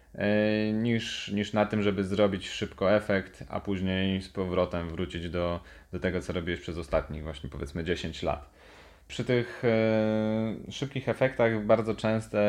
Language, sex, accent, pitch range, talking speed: Polish, male, native, 90-105 Hz, 150 wpm